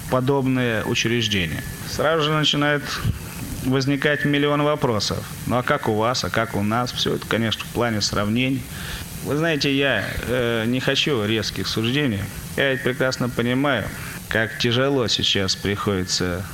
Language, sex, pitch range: Russian, male, 110-140 Hz